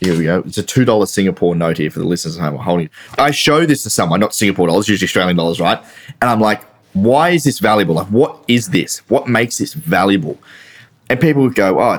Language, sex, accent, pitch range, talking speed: English, male, Australian, 90-120 Hz, 225 wpm